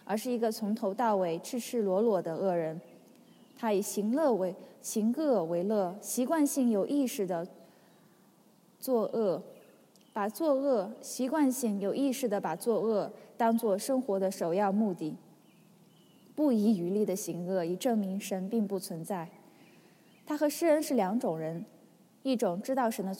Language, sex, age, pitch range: English, female, 10-29, 190-245 Hz